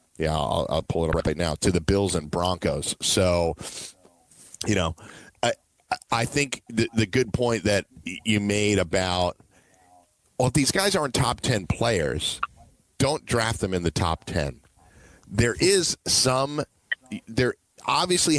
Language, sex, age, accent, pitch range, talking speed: English, male, 40-59, American, 90-120 Hz, 155 wpm